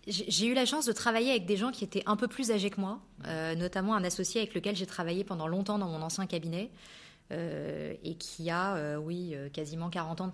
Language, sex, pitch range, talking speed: French, female, 170-205 Hz, 240 wpm